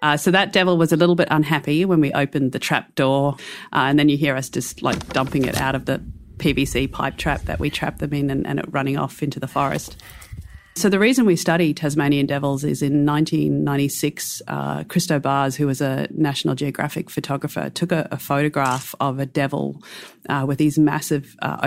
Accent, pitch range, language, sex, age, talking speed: Australian, 135-155 Hz, English, female, 40-59, 210 wpm